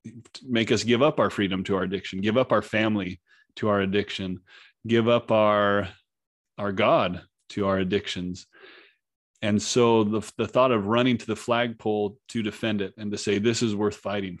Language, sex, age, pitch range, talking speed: English, male, 30-49, 100-115 Hz, 185 wpm